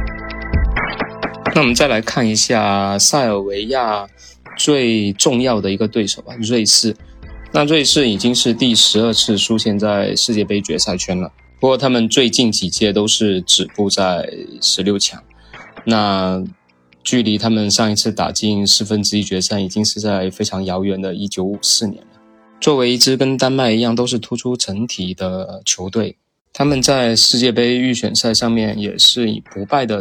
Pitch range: 100-115 Hz